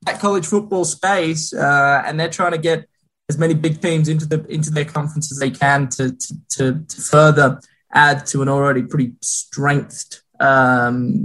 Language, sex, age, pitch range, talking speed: English, male, 10-29, 125-160 Hz, 175 wpm